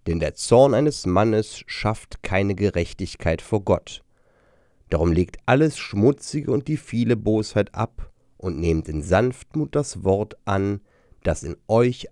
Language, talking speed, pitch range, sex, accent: German, 145 wpm, 95-135 Hz, male, German